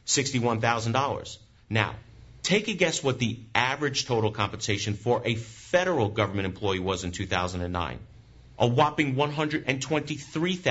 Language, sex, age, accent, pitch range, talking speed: English, male, 40-59, American, 110-155 Hz, 100 wpm